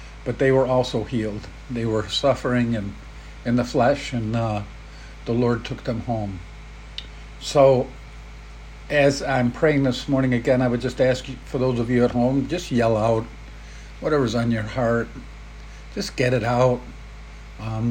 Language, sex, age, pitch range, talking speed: English, male, 50-69, 110-130 Hz, 165 wpm